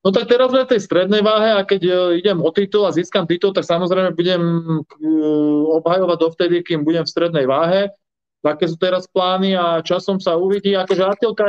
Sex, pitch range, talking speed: male, 145-180 Hz, 180 wpm